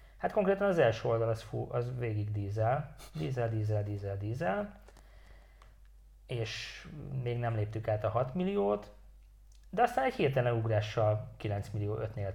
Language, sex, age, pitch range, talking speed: English, male, 30-49, 105-125 Hz, 145 wpm